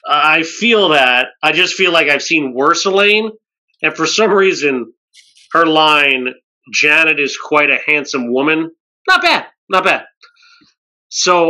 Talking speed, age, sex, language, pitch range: 145 wpm, 30-49, male, English, 145-195 Hz